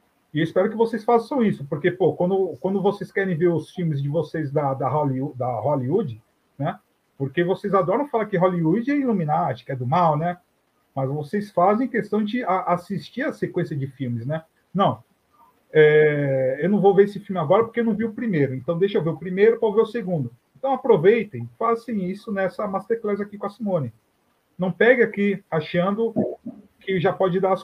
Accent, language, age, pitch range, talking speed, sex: Brazilian, Portuguese, 40-59, 140-200 Hz, 195 wpm, male